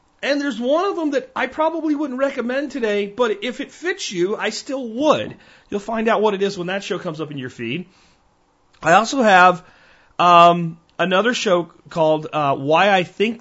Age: 40-59